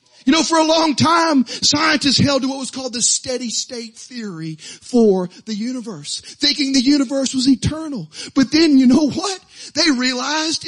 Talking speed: 175 wpm